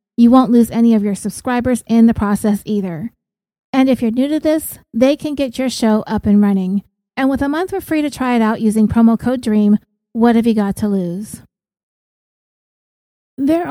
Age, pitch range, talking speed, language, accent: 30-49, 215-260 Hz, 200 wpm, English, American